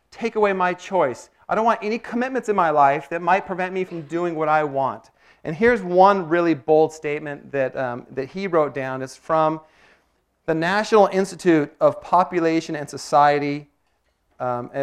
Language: English